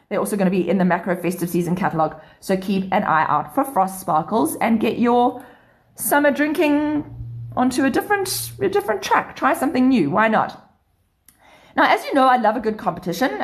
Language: English